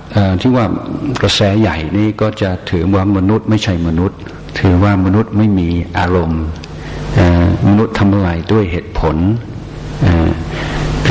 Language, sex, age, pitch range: Thai, male, 60-79, 85-100 Hz